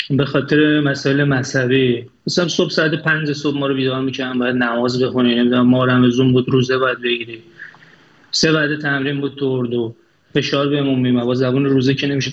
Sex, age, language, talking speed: male, 30-49, Persian, 180 wpm